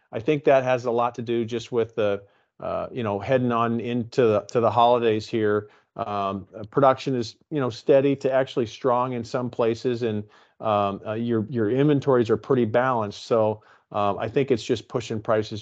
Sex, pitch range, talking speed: male, 110-135 Hz, 190 wpm